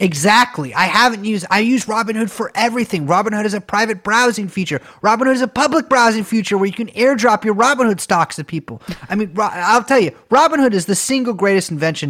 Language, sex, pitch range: English, male, 130-205 Hz